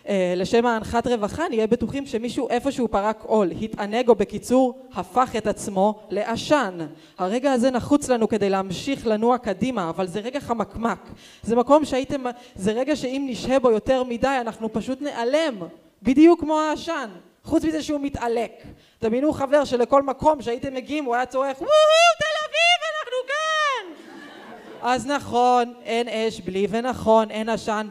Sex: female